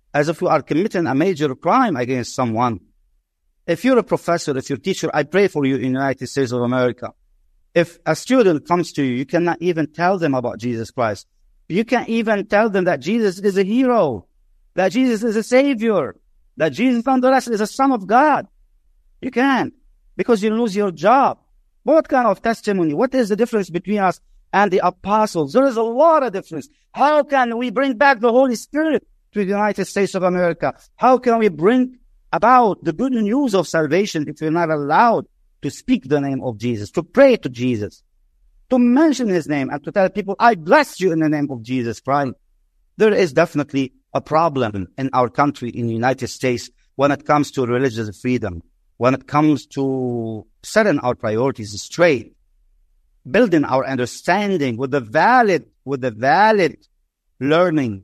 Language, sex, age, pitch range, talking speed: English, male, 50-69, 130-220 Hz, 185 wpm